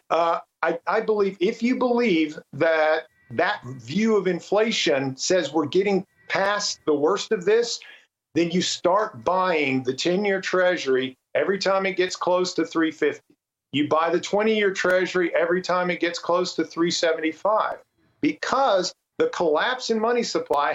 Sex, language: male, English